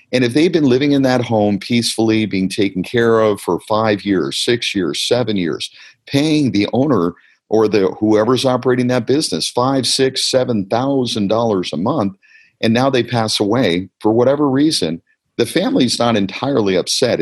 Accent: American